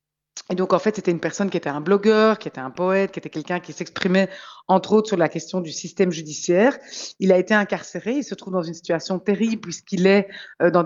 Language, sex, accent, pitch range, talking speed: French, female, French, 170-205 Hz, 240 wpm